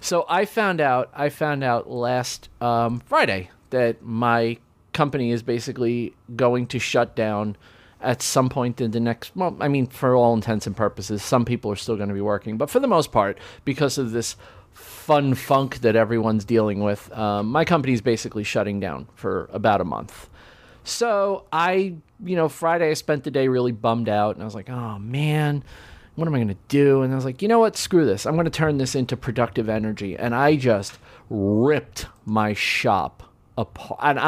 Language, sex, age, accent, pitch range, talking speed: English, male, 40-59, American, 110-140 Hz, 200 wpm